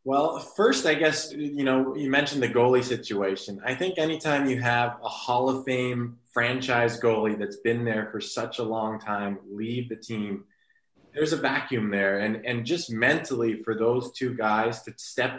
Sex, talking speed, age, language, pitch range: male, 185 wpm, 20-39, English, 110-125 Hz